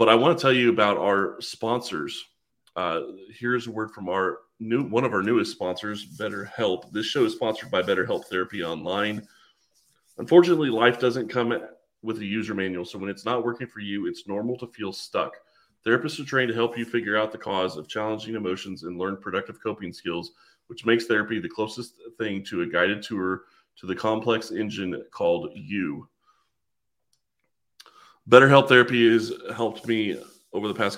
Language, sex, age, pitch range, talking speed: English, male, 30-49, 100-120 Hz, 180 wpm